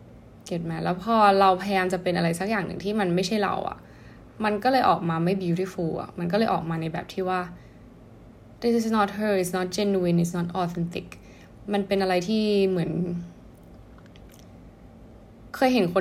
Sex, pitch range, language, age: female, 170-205 Hz, Thai, 10-29